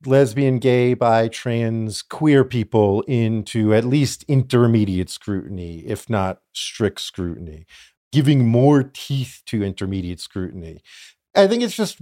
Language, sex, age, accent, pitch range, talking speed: English, male, 50-69, American, 110-150 Hz, 125 wpm